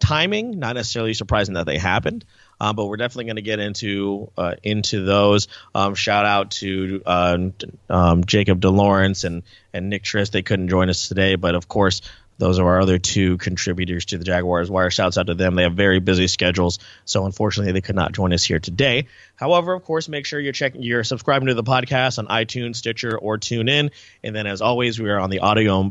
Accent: American